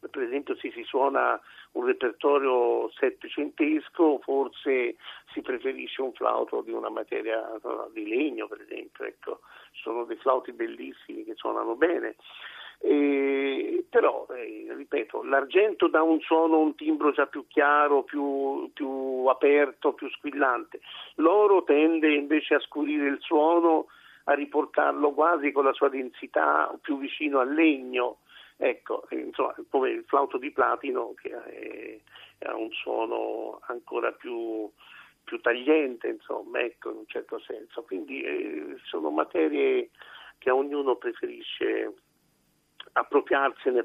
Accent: native